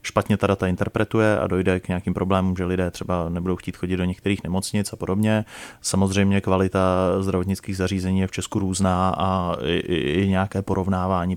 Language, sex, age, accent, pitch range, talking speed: Czech, male, 30-49, native, 90-100 Hz, 180 wpm